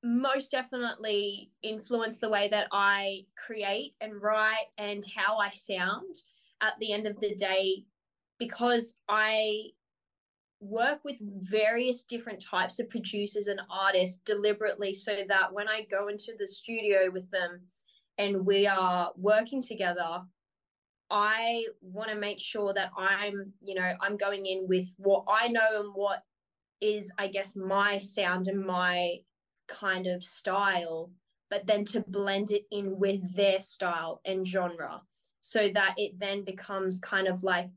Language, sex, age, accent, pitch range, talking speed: English, female, 20-39, Australian, 185-210 Hz, 150 wpm